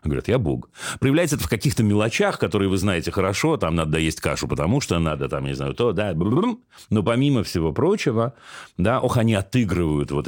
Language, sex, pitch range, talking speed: Russian, male, 80-120 Hz, 200 wpm